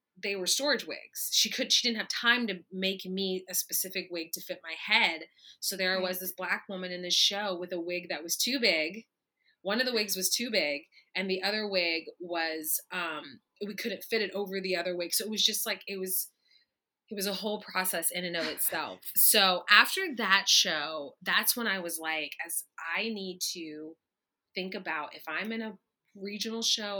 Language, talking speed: English, 210 wpm